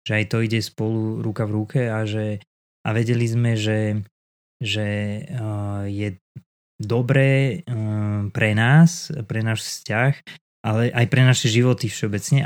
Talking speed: 145 wpm